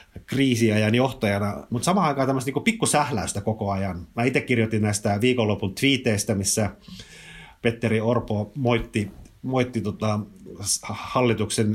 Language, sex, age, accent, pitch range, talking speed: Finnish, male, 30-49, native, 105-120 Hz, 115 wpm